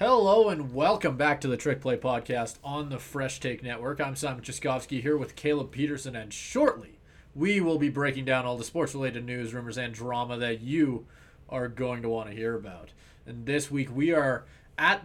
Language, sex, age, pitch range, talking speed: English, male, 20-39, 120-150 Hz, 200 wpm